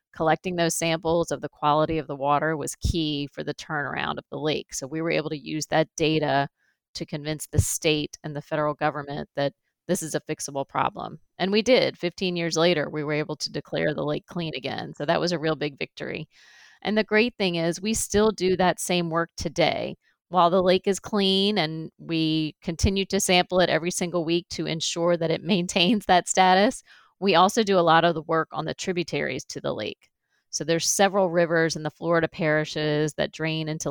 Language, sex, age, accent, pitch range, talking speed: English, female, 30-49, American, 155-180 Hz, 210 wpm